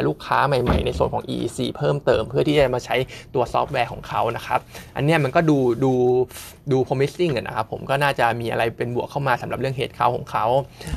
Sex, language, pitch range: male, Thai, 120-145 Hz